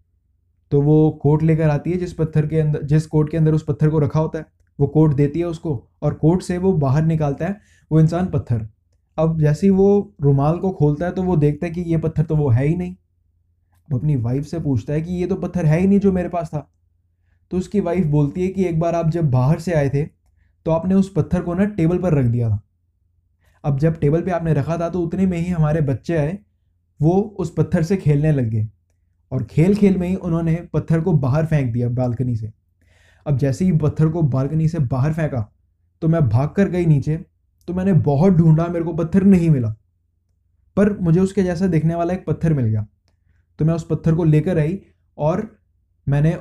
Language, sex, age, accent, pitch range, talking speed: Hindi, male, 20-39, native, 115-175 Hz, 225 wpm